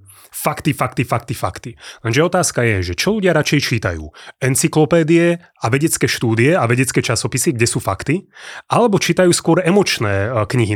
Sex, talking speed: male, 150 wpm